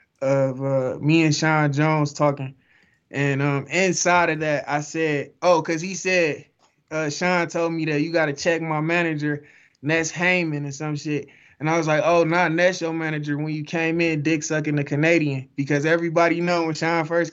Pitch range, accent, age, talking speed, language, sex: 145-165 Hz, American, 20-39, 195 wpm, English, male